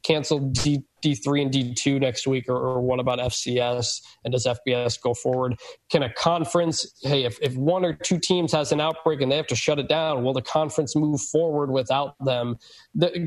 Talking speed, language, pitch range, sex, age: 200 wpm, English, 130-155 Hz, male, 20-39